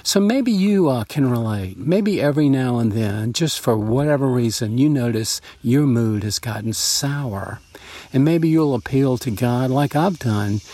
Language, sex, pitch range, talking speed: English, male, 115-145 Hz, 175 wpm